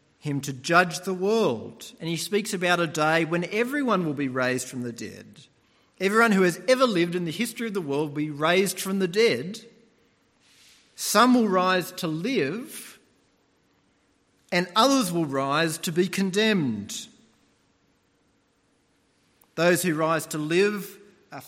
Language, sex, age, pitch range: English, male, 40-59, 145-185 Hz